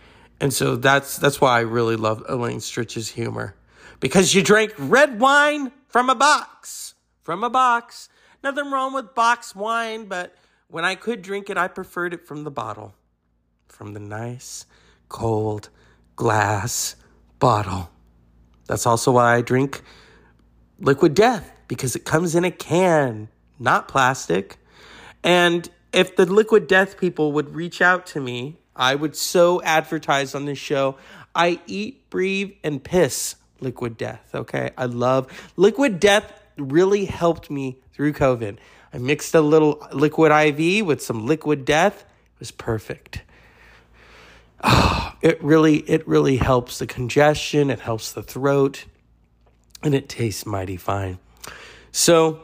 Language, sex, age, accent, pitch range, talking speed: English, male, 40-59, American, 115-180 Hz, 145 wpm